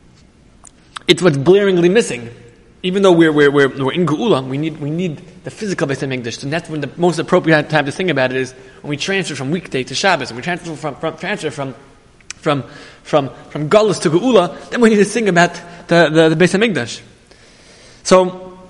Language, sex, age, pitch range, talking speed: English, male, 20-39, 150-190 Hz, 200 wpm